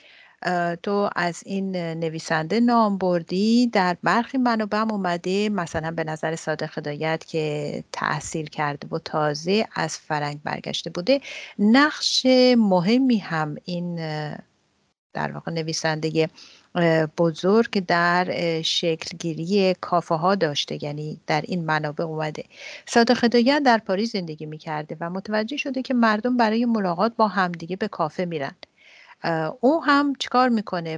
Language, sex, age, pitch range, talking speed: English, female, 50-69, 165-225 Hz, 130 wpm